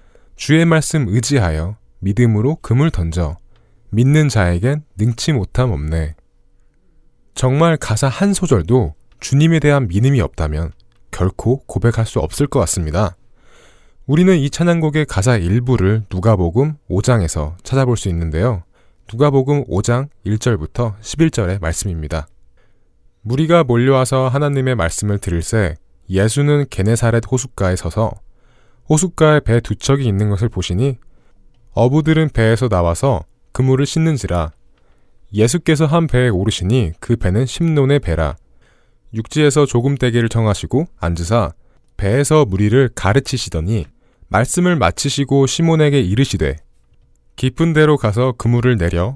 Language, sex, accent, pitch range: Korean, male, native, 95-140 Hz